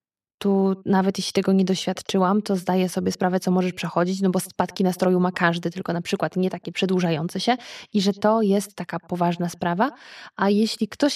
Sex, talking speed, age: female, 195 wpm, 20-39